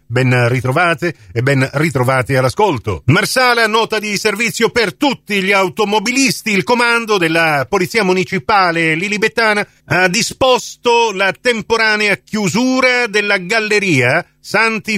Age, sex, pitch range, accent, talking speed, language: 40-59, male, 150-210 Hz, native, 110 wpm, Italian